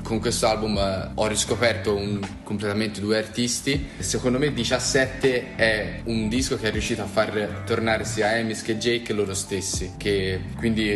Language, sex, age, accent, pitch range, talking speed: Italian, male, 20-39, native, 100-115 Hz, 160 wpm